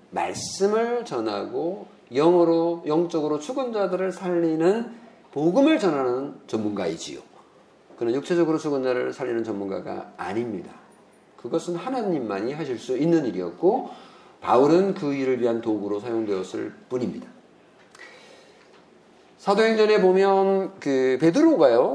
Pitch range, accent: 135-200 Hz, native